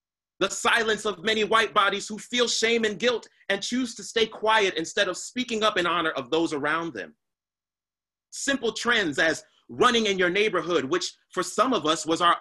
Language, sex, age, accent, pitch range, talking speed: English, male, 30-49, American, 150-225 Hz, 195 wpm